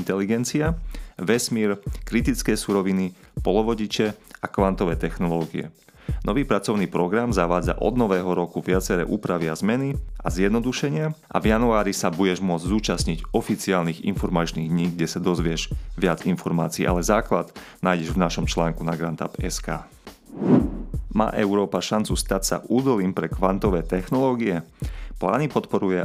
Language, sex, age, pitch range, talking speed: Slovak, male, 30-49, 85-105 Hz, 125 wpm